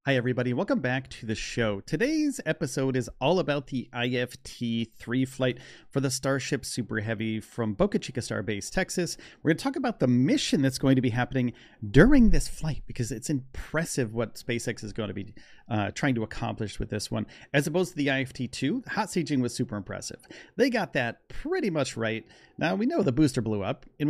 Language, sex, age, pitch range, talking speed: English, male, 40-59, 115-145 Hz, 200 wpm